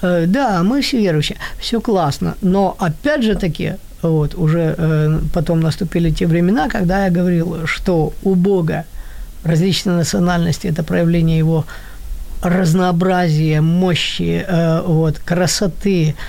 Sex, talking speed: female, 115 wpm